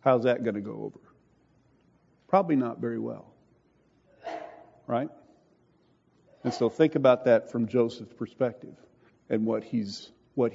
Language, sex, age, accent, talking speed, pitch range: English, male, 50-69, American, 130 wpm, 110-130 Hz